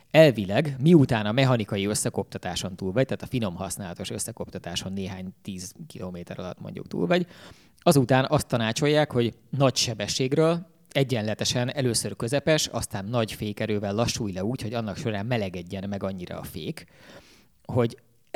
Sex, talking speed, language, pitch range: male, 135 wpm, Hungarian, 100-130 Hz